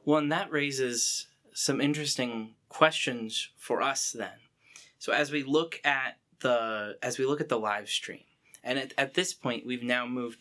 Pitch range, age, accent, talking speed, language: 120-145 Hz, 20-39, American, 180 wpm, English